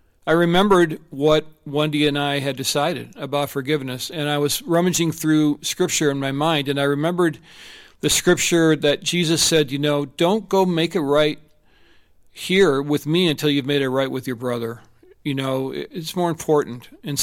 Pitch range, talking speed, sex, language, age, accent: 140-160 Hz, 180 wpm, male, English, 40-59, American